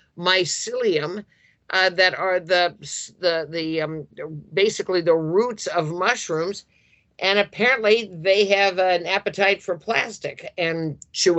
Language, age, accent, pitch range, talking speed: English, 50-69, American, 165-195 Hz, 120 wpm